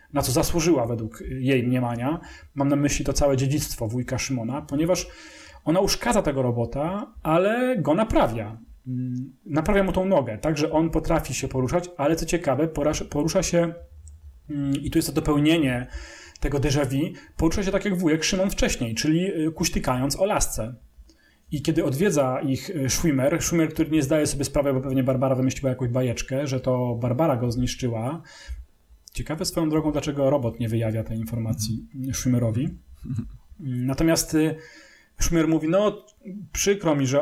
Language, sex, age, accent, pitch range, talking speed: English, male, 30-49, Polish, 130-160 Hz, 155 wpm